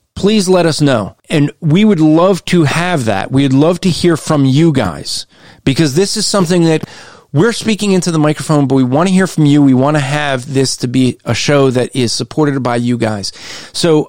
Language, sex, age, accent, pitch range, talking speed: English, male, 40-59, American, 135-170 Hz, 215 wpm